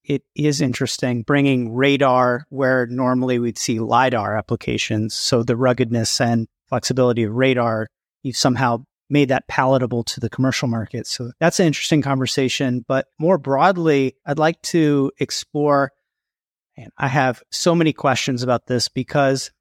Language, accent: English, American